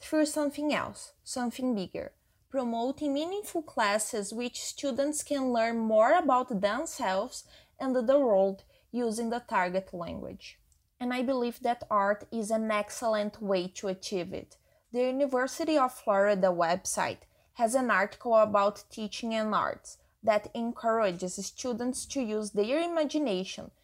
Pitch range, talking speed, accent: 200-280 Hz, 135 wpm, Brazilian